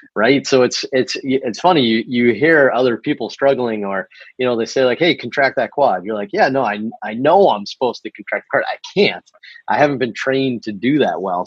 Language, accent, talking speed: English, American, 230 wpm